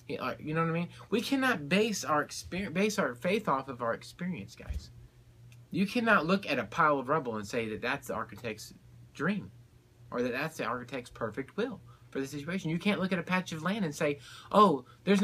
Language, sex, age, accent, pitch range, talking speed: English, male, 30-49, American, 120-185 Hz, 215 wpm